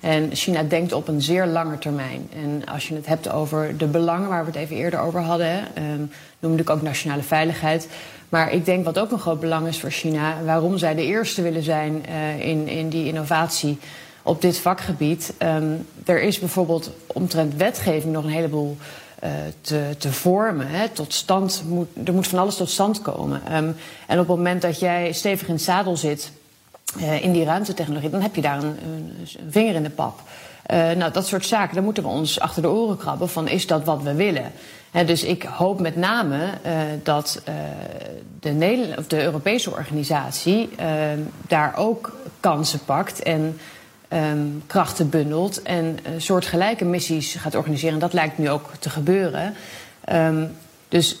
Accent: Dutch